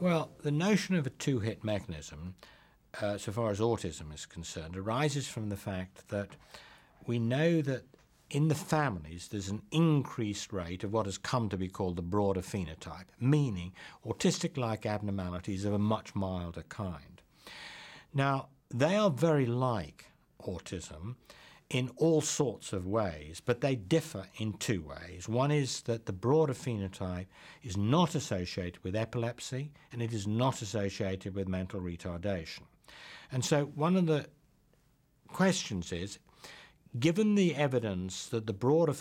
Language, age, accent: English, 60-79, British